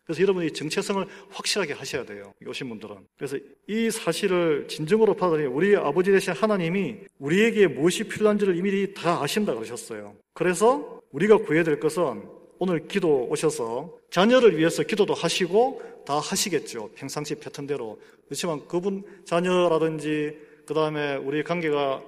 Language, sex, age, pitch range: Korean, male, 40-59, 150-200 Hz